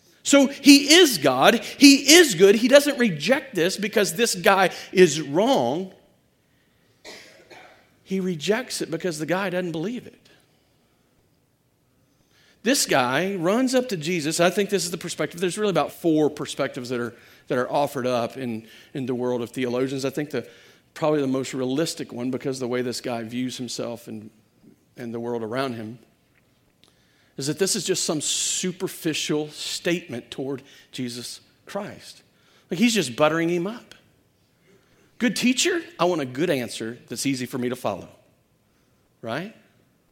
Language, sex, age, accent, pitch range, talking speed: English, male, 40-59, American, 130-200 Hz, 160 wpm